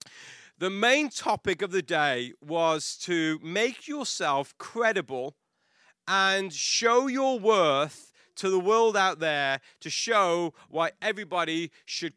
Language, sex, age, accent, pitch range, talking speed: English, male, 30-49, British, 165-215 Hz, 125 wpm